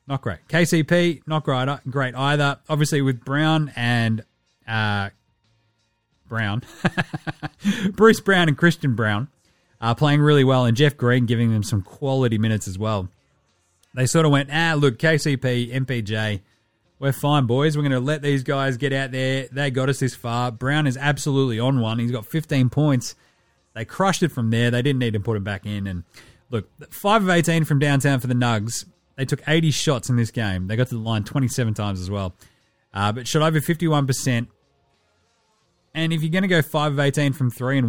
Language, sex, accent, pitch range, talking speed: English, male, Australian, 115-150 Hz, 190 wpm